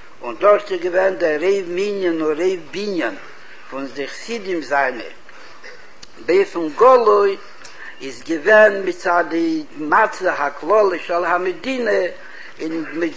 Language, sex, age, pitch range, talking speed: English, male, 60-79, 170-235 Hz, 115 wpm